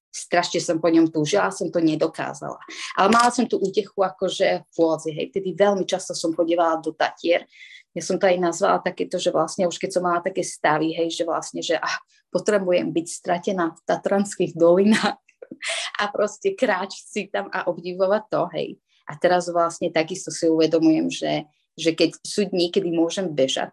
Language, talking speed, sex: Slovak, 180 wpm, female